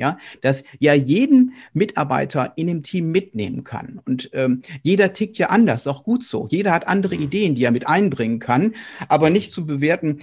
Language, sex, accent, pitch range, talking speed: German, male, German, 130-190 Hz, 190 wpm